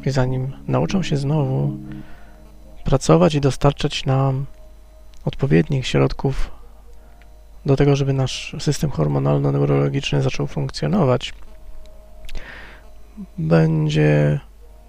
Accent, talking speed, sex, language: native, 80 wpm, male, Polish